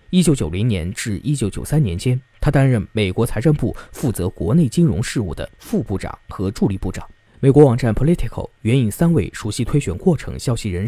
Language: Chinese